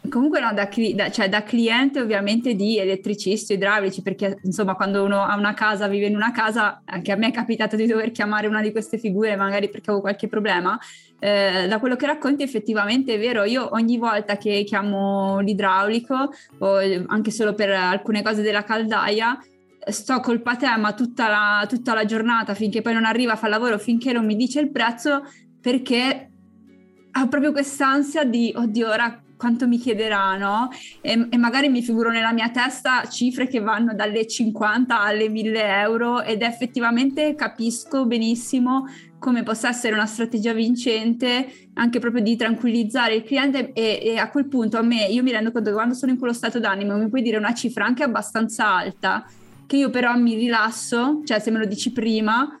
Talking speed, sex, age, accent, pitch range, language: 185 wpm, female, 20-39, native, 210-245 Hz, Italian